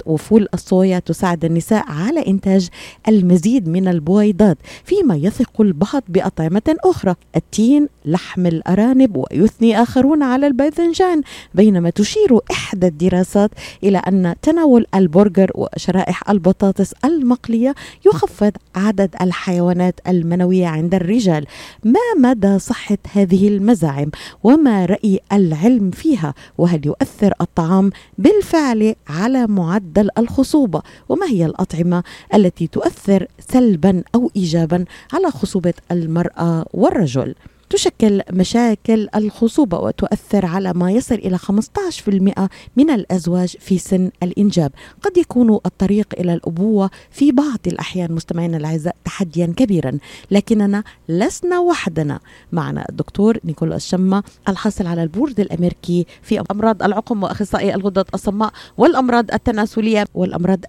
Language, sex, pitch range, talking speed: Arabic, female, 180-225 Hz, 110 wpm